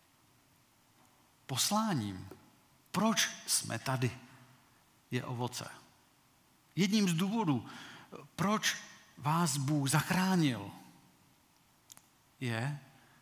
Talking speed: 65 wpm